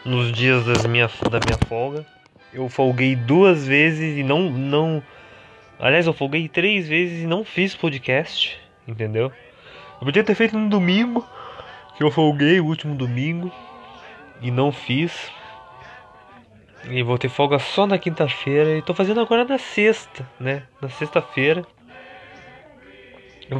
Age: 20-39